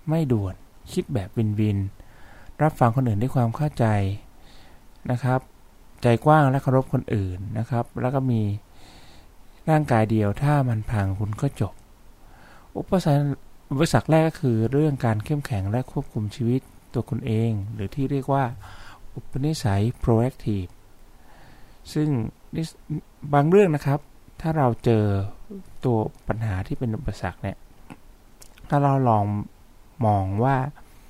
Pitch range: 105-140 Hz